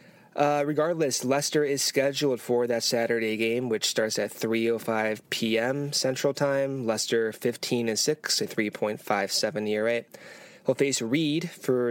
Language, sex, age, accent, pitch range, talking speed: English, male, 20-39, American, 115-145 Hz, 135 wpm